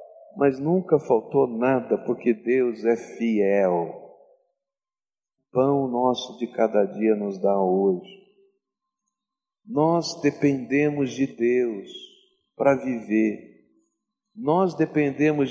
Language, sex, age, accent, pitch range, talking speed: Portuguese, male, 50-69, Brazilian, 140-200 Hz, 95 wpm